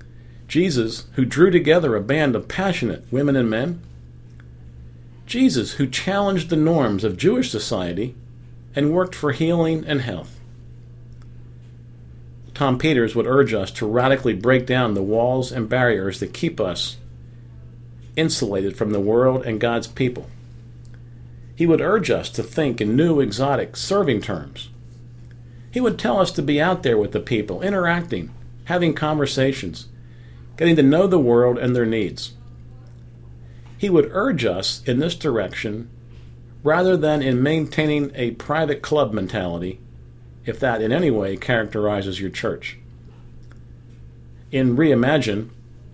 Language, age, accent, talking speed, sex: English, 50-69, American, 140 wpm, male